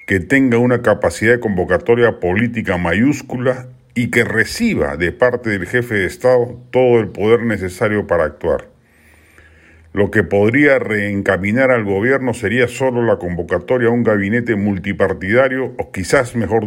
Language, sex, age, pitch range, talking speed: Spanish, male, 50-69, 100-125 Hz, 145 wpm